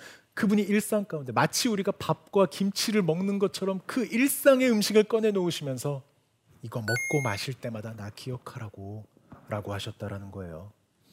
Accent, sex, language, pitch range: native, male, Korean, 130-205 Hz